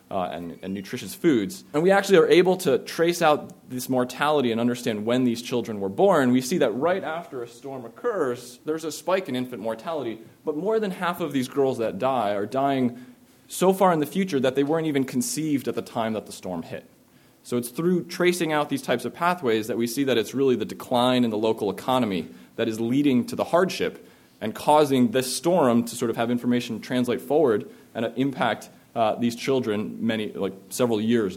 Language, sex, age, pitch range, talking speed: English, male, 20-39, 110-145 Hz, 210 wpm